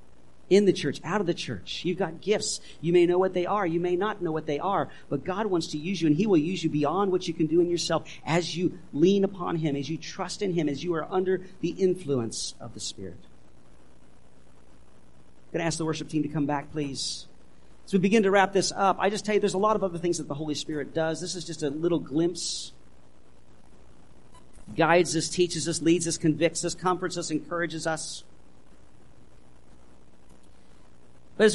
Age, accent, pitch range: 50-69, American, 140-195 Hz